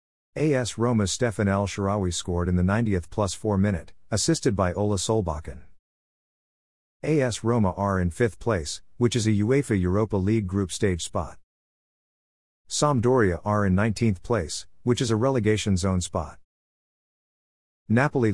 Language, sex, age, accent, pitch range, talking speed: English, male, 50-69, American, 90-115 Hz, 140 wpm